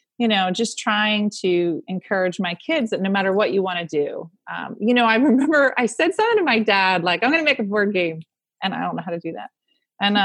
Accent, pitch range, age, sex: American, 185-245 Hz, 30-49, female